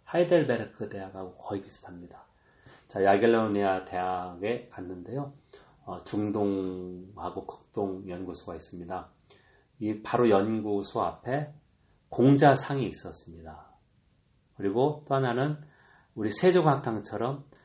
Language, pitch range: Korean, 95-130 Hz